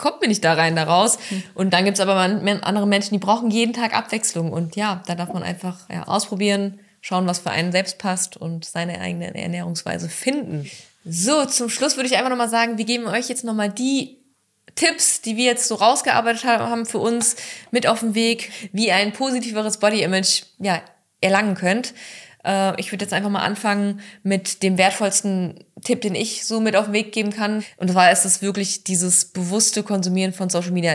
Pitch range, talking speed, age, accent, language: 180-215 Hz, 200 wpm, 20-39, German, German